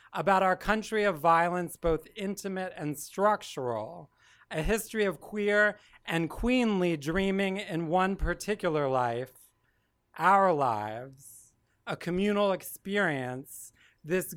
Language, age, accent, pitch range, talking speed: English, 40-59, American, 145-195 Hz, 110 wpm